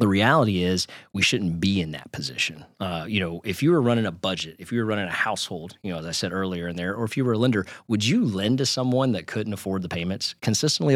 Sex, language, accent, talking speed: male, English, American, 270 wpm